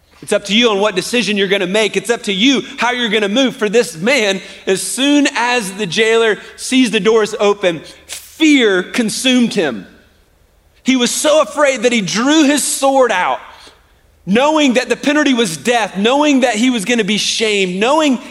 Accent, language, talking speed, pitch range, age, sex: American, English, 195 wpm, 165-240 Hz, 30-49, male